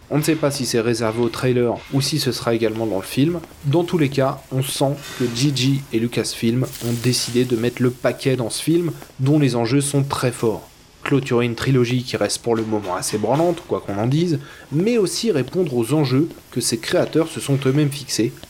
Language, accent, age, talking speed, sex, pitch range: French, French, 20-39, 220 wpm, male, 115-145 Hz